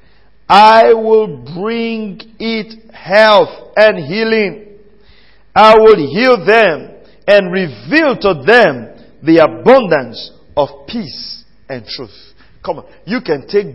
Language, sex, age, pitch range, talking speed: English, male, 50-69, 145-210 Hz, 115 wpm